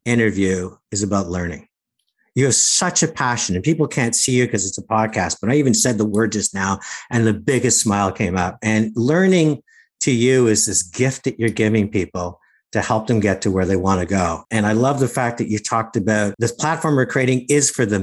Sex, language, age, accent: male, English, 50-69, American